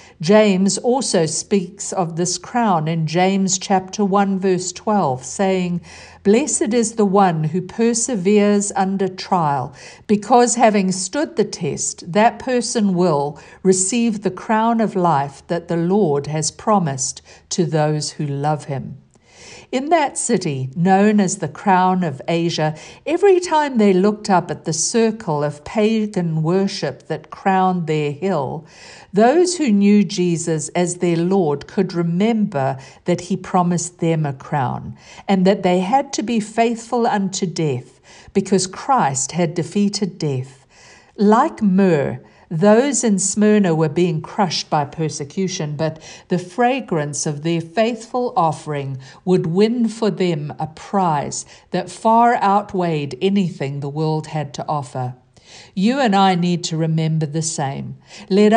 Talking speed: 140 wpm